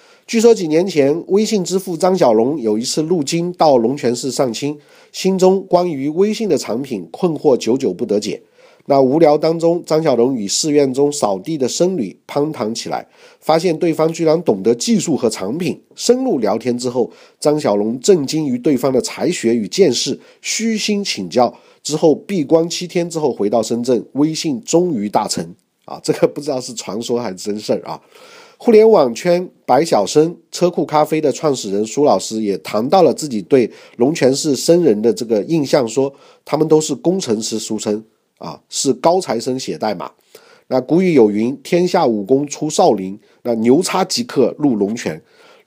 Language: Chinese